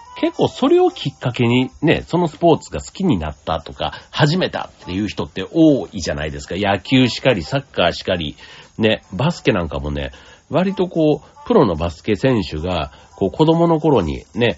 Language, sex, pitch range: Japanese, male, 85-130 Hz